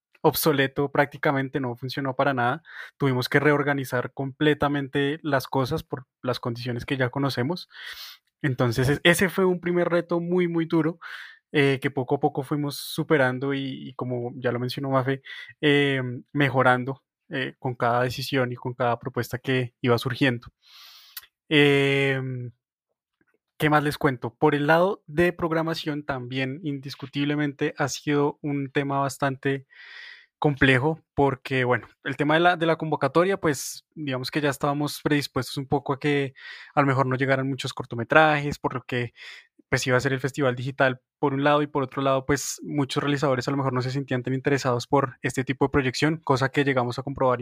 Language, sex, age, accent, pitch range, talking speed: Spanish, male, 20-39, Colombian, 130-150 Hz, 170 wpm